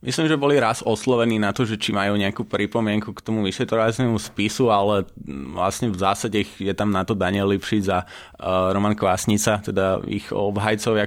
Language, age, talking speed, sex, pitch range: Slovak, 20-39, 175 wpm, male, 95-105 Hz